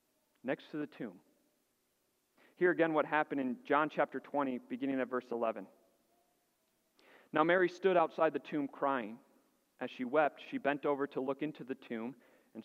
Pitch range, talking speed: 130-185 Hz, 165 wpm